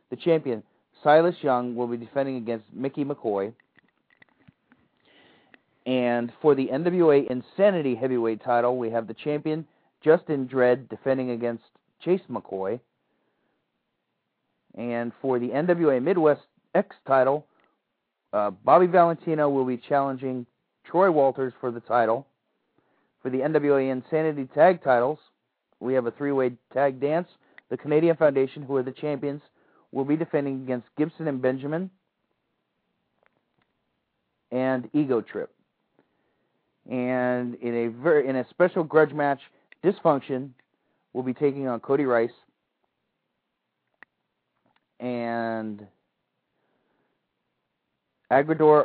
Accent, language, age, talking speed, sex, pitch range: American, English, 40-59, 115 wpm, male, 120-145 Hz